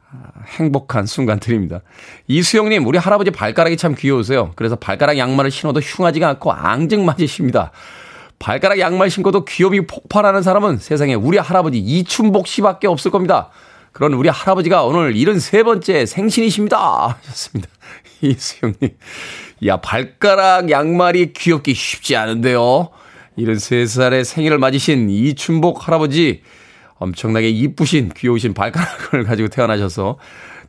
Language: Korean